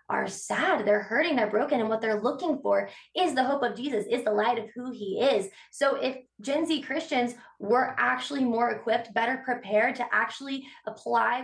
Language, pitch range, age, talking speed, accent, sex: English, 215-275 Hz, 20-39, 195 wpm, American, female